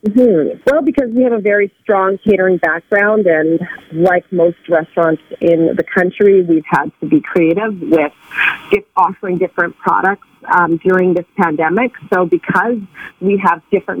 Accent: American